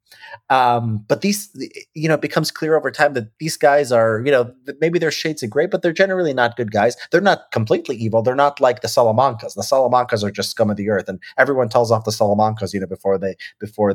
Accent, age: American, 30-49